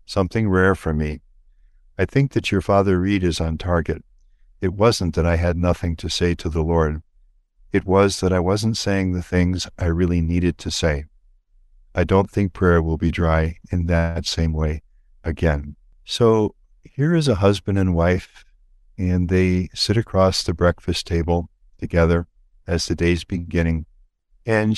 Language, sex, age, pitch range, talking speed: English, male, 60-79, 85-95 Hz, 165 wpm